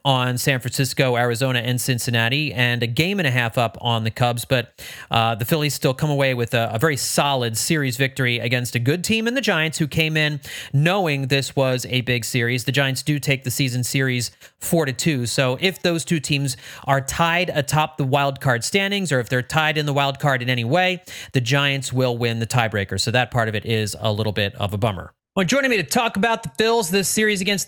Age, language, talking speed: 30-49, English, 235 wpm